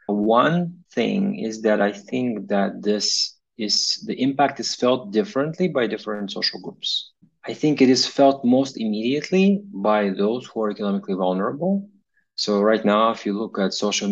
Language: English